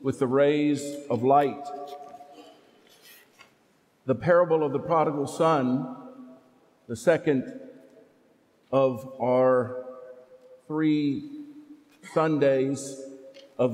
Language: English